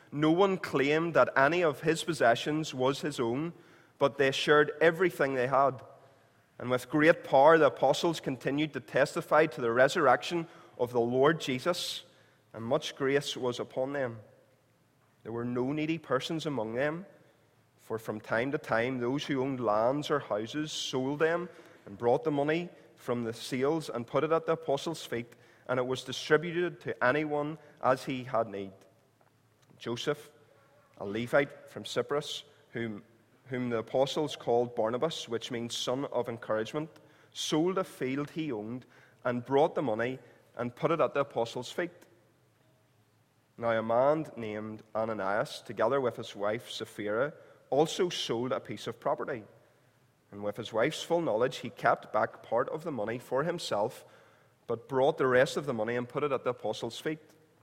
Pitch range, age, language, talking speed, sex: 115-150 Hz, 30-49, English, 165 wpm, male